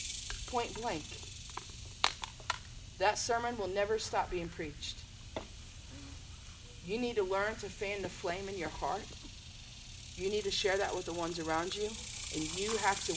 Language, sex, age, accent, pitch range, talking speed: English, female, 40-59, American, 155-235 Hz, 155 wpm